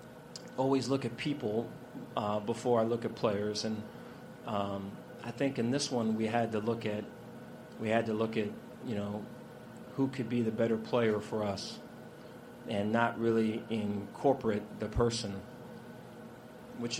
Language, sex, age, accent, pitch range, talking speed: English, male, 40-59, American, 105-120 Hz, 155 wpm